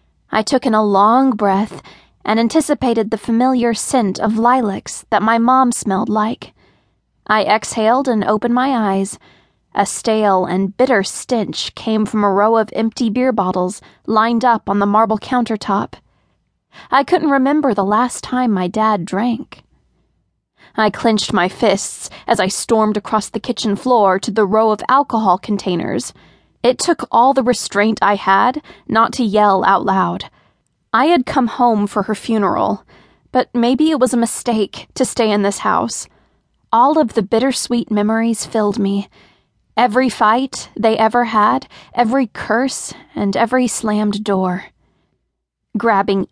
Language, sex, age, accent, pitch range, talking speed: English, female, 20-39, American, 205-245 Hz, 155 wpm